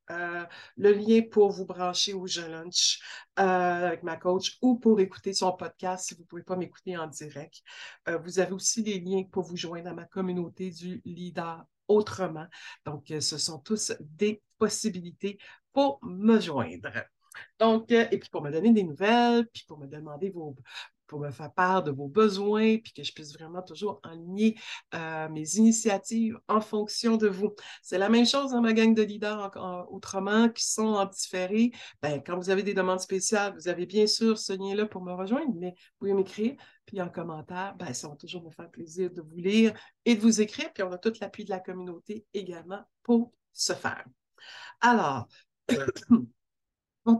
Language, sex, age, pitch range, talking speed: French, female, 60-79, 175-220 Hz, 195 wpm